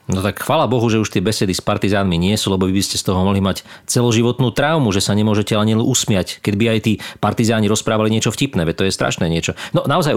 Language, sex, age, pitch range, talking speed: Slovak, male, 40-59, 95-125 Hz, 250 wpm